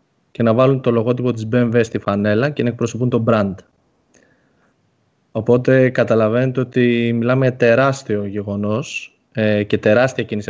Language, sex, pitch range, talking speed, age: Greek, male, 105-130 Hz, 135 wpm, 20-39